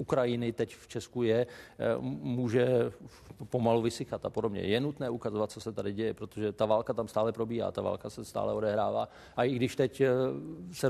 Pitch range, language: 100-115 Hz, Czech